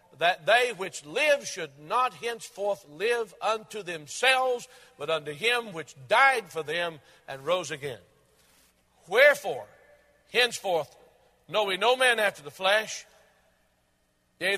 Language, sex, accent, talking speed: English, male, American, 125 wpm